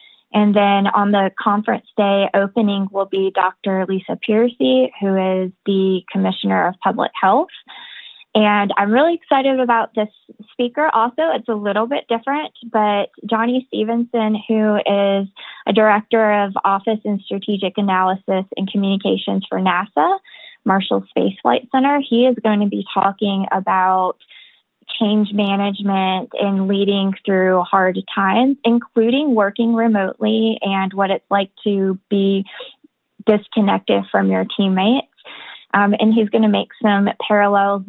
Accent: American